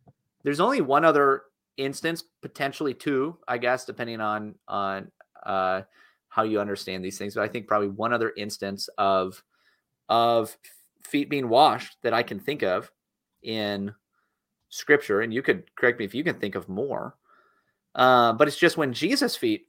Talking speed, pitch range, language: 170 wpm, 100-135 Hz, English